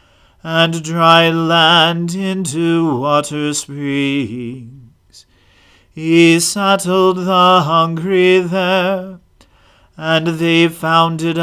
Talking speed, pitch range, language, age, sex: 75 wpm, 140-170 Hz, English, 40-59, male